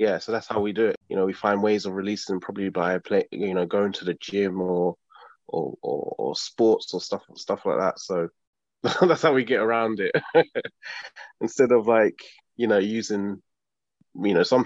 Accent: British